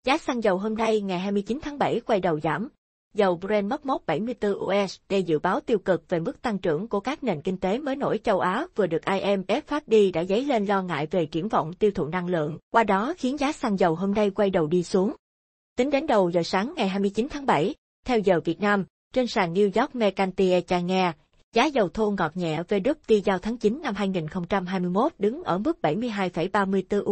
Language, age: Vietnamese, 20-39